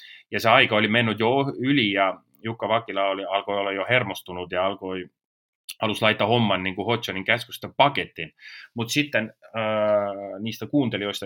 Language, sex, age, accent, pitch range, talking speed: Finnish, male, 30-49, native, 95-115 Hz, 160 wpm